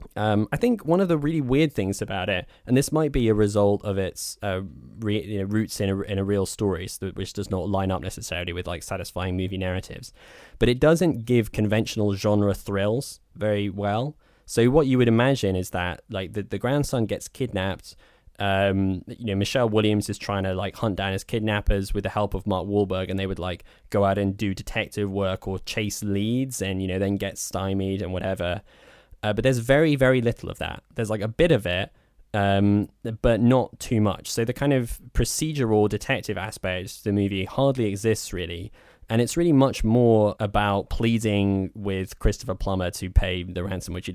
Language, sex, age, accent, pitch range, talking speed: English, male, 10-29, British, 95-115 Hz, 200 wpm